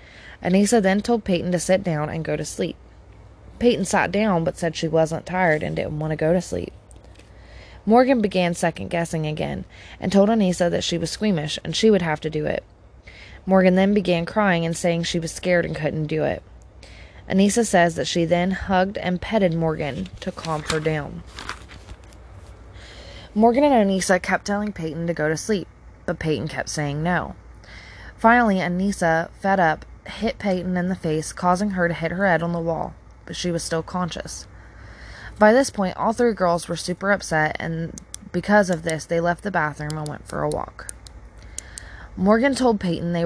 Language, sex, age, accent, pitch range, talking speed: English, female, 20-39, American, 155-195 Hz, 185 wpm